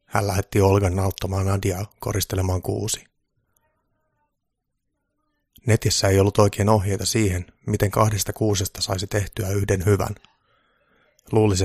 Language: Finnish